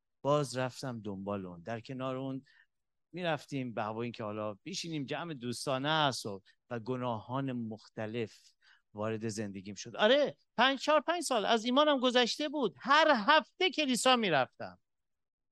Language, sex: Persian, male